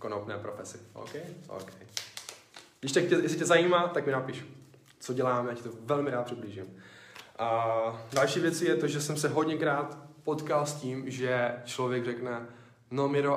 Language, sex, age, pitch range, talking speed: Czech, male, 10-29, 115-145 Hz, 155 wpm